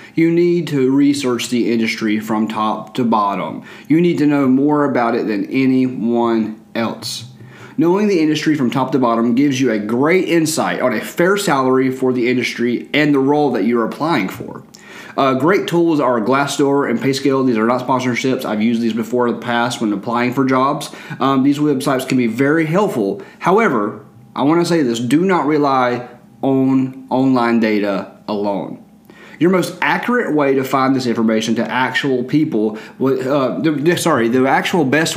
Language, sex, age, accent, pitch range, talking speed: English, male, 30-49, American, 115-150 Hz, 175 wpm